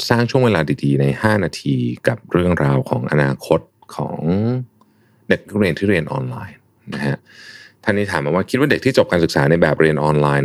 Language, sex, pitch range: Thai, male, 70-95 Hz